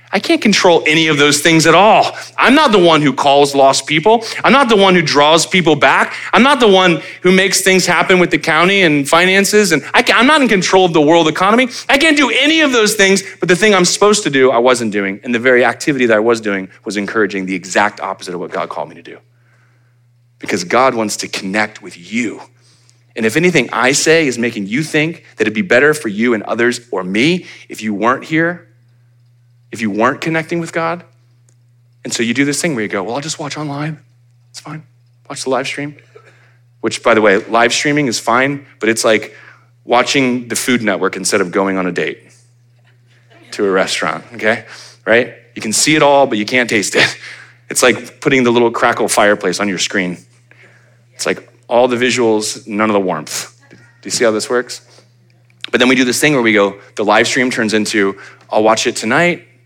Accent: American